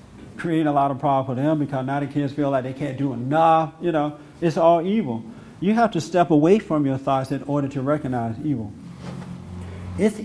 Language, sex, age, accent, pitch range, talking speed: English, male, 50-69, American, 130-160 Hz, 210 wpm